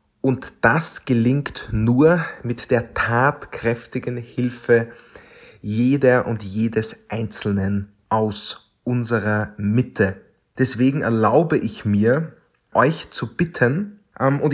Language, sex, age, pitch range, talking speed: German, male, 30-49, 110-135 Hz, 95 wpm